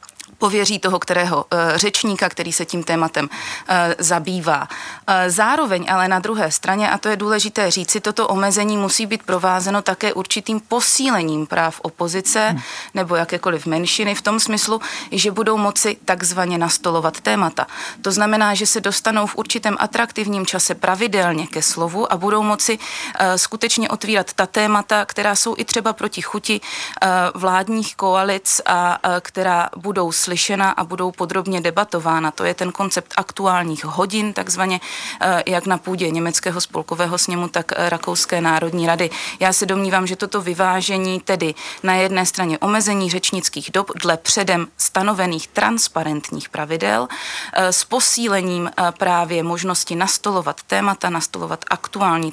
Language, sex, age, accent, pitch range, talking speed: Czech, female, 30-49, native, 175-205 Hz, 135 wpm